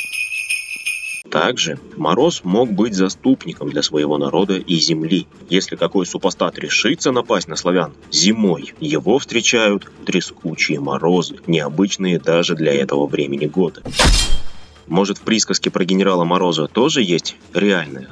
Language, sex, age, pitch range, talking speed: Russian, male, 20-39, 85-100 Hz, 125 wpm